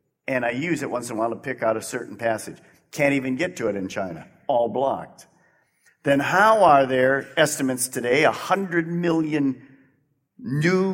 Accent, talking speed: American, 175 wpm